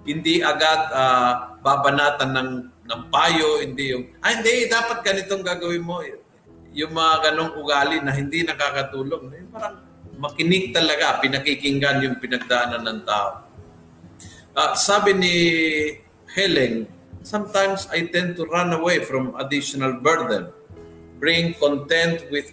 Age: 50-69